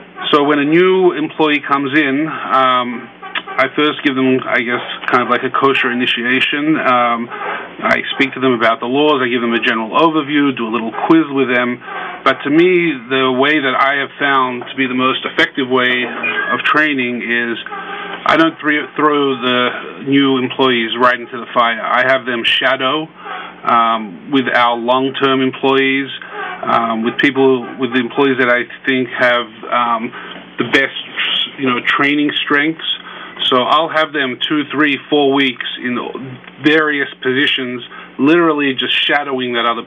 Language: English